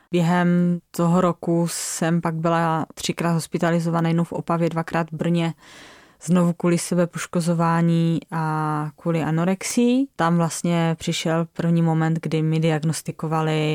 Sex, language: female, Czech